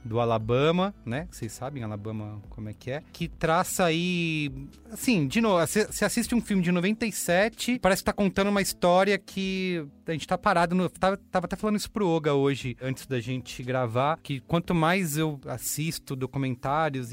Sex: male